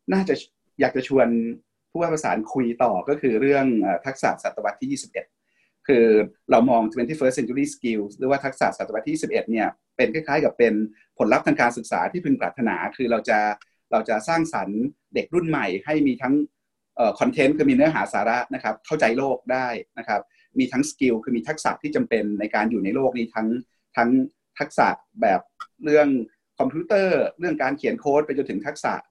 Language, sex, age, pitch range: Thai, male, 30-49, 115-160 Hz